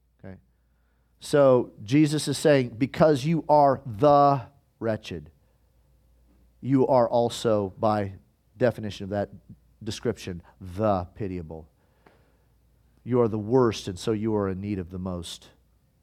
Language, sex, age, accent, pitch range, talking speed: Italian, male, 40-59, American, 105-140 Hz, 120 wpm